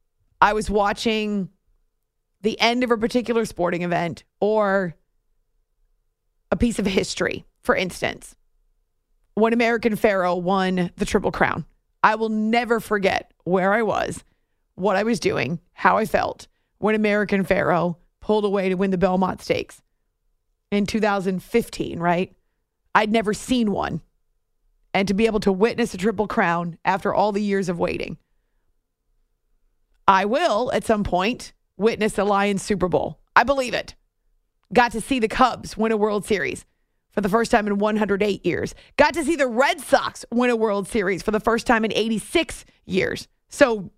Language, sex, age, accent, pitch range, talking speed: English, female, 30-49, American, 185-230 Hz, 160 wpm